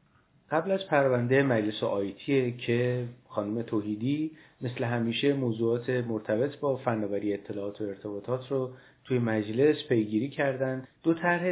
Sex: male